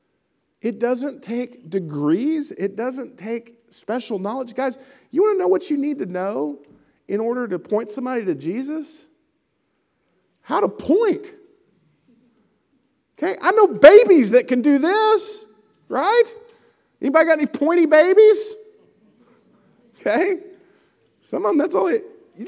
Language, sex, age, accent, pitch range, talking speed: English, male, 40-59, American, 210-335 Hz, 135 wpm